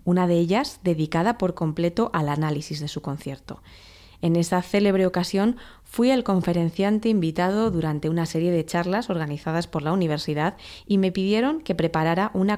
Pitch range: 155-190 Hz